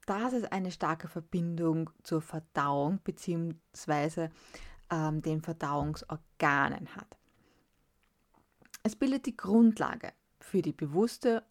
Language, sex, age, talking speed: German, female, 20-39, 95 wpm